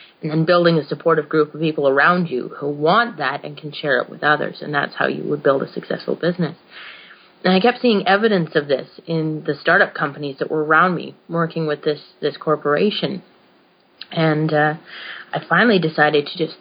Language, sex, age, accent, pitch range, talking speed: English, female, 30-49, American, 155-180 Hz, 200 wpm